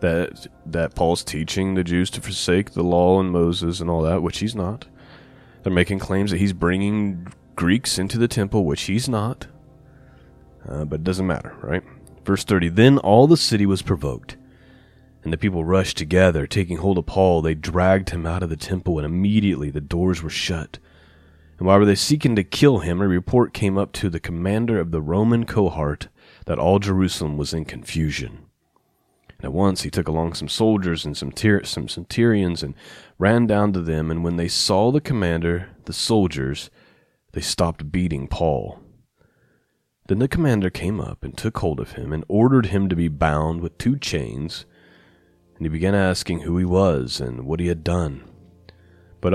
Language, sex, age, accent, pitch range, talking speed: English, male, 30-49, American, 80-100 Hz, 190 wpm